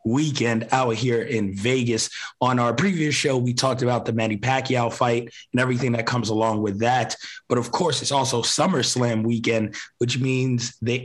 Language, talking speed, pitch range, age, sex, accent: English, 180 wpm, 115-135 Hz, 20-39, male, American